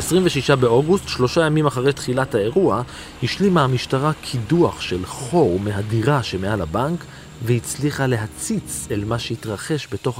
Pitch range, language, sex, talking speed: 110-140 Hz, Hebrew, male, 125 wpm